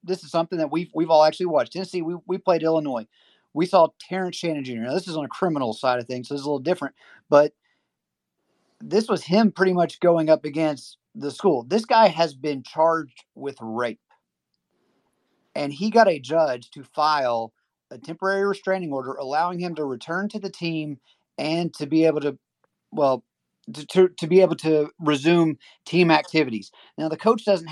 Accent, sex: American, male